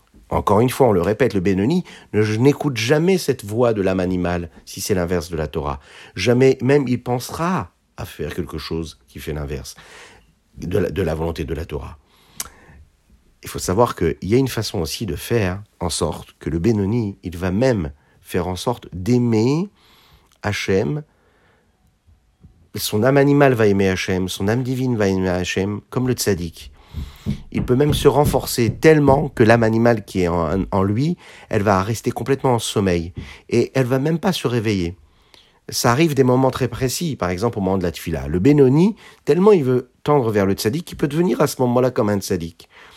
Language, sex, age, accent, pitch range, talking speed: French, male, 40-59, French, 90-130 Hz, 195 wpm